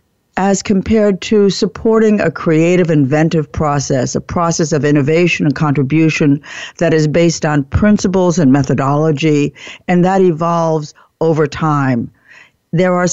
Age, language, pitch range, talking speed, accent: 60-79, English, 145-185 Hz, 130 wpm, American